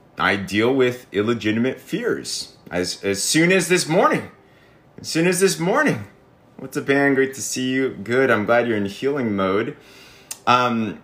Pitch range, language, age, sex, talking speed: 95-130 Hz, English, 30-49, male, 170 wpm